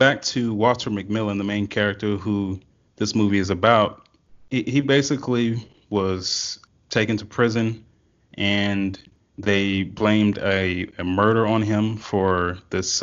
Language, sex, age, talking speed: English, male, 30-49, 135 wpm